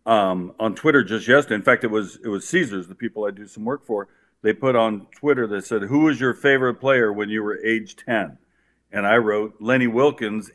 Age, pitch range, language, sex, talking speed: 50-69, 110-125 Hz, English, male, 230 wpm